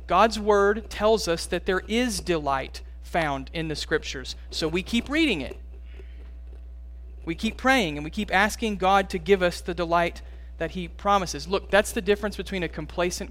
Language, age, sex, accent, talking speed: English, 40-59, male, American, 180 wpm